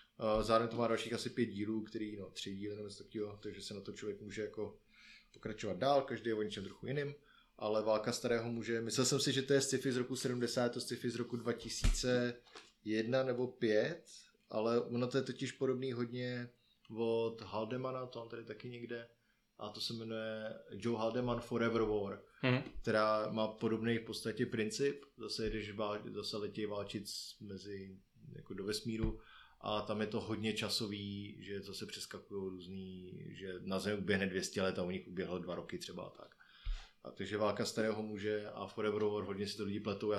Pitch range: 105-125 Hz